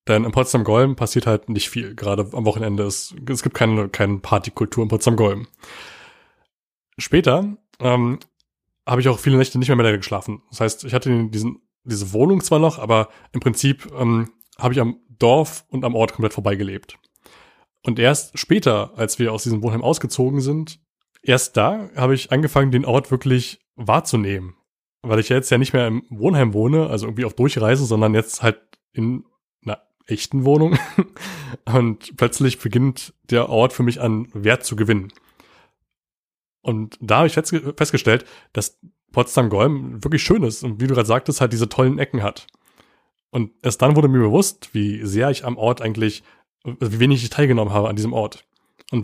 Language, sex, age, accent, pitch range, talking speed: German, male, 20-39, German, 110-135 Hz, 175 wpm